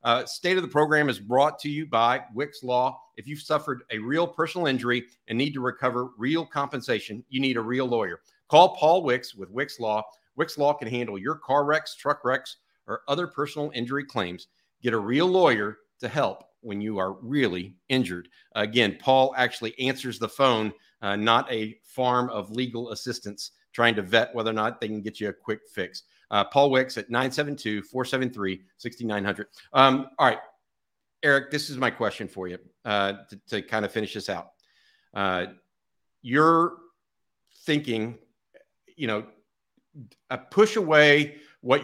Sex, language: male, English